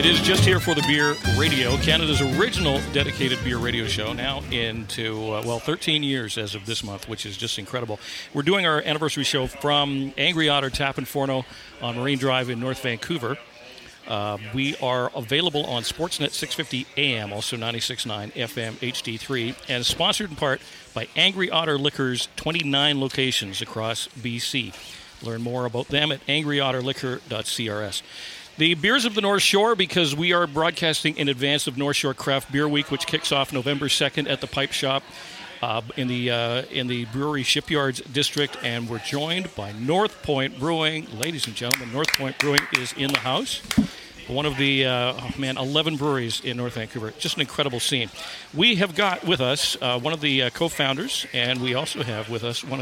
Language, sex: English, male